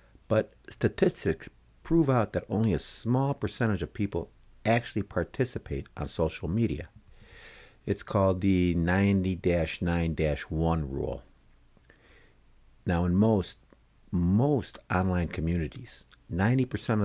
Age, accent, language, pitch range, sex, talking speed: 50-69, American, English, 80-105 Hz, male, 100 wpm